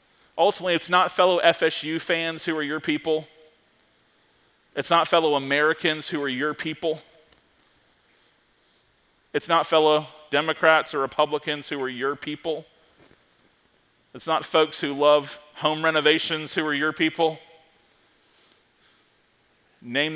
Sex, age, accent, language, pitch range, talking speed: male, 30-49, American, English, 150-170 Hz, 120 wpm